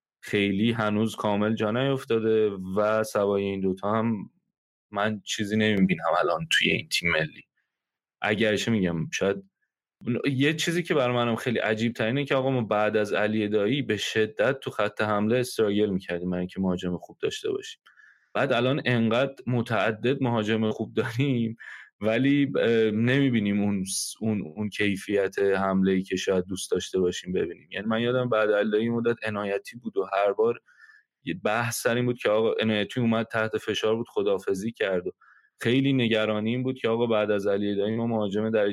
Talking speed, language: 165 wpm, Persian